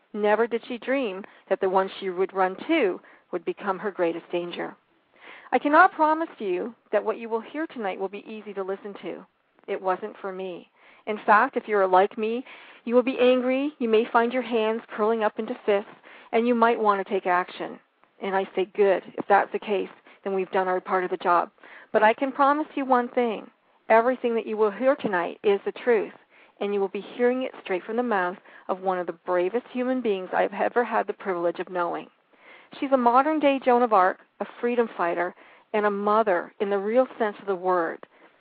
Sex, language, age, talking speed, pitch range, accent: female, English, 40-59, 215 wpm, 195-250 Hz, American